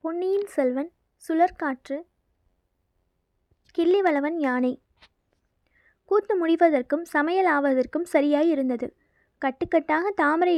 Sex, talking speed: female, 75 wpm